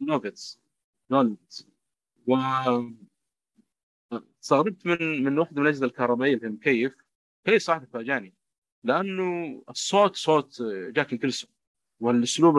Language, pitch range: Arabic, 120-155 Hz